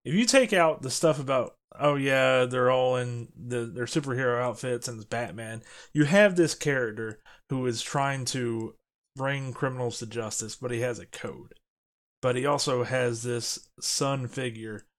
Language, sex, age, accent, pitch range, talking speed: English, male, 30-49, American, 115-140 Hz, 170 wpm